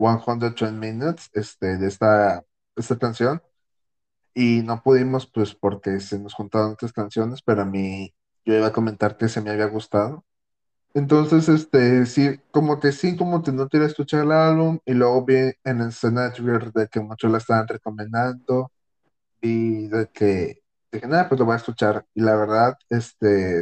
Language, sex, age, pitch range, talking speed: Spanish, male, 30-49, 110-125 Hz, 180 wpm